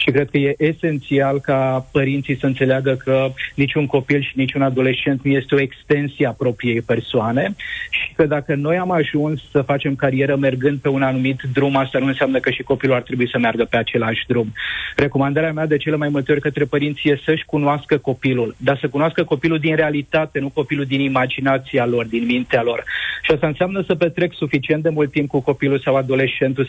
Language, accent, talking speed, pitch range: Romanian, native, 200 wpm, 130-150 Hz